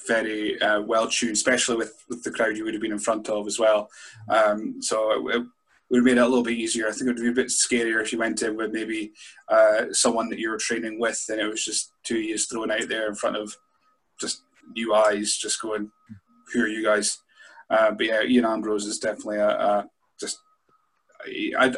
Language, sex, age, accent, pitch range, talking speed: English, male, 20-39, British, 110-140 Hz, 225 wpm